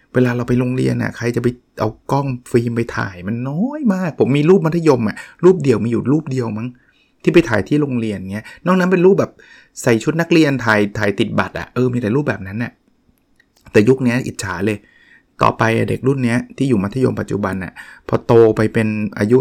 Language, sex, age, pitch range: Thai, male, 20-39, 105-130 Hz